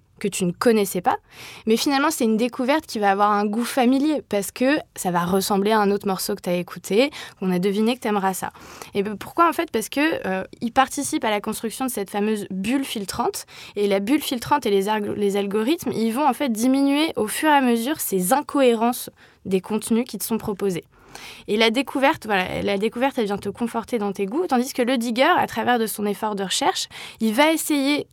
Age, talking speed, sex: 20-39, 230 wpm, female